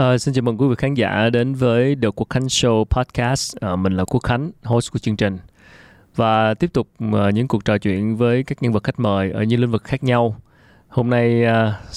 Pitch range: 105-125 Hz